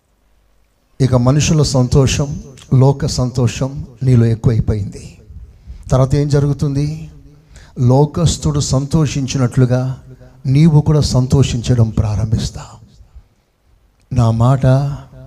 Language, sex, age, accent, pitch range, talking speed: Telugu, male, 60-79, native, 120-155 Hz, 70 wpm